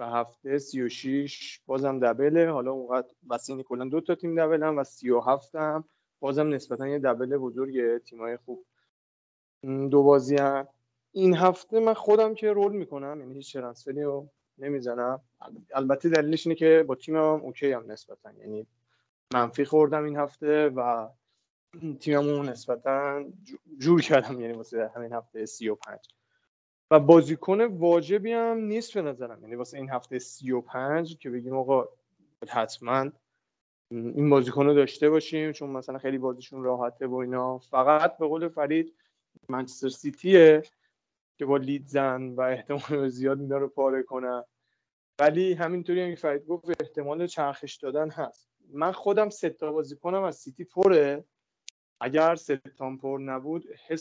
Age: 30-49